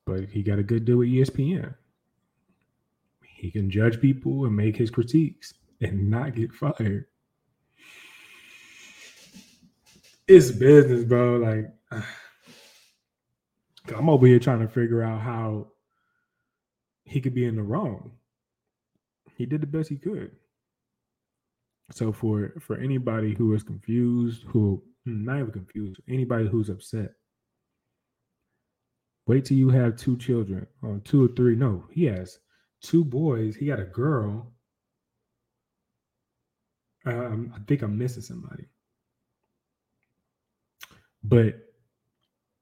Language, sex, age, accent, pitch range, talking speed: English, male, 20-39, American, 105-130 Hz, 120 wpm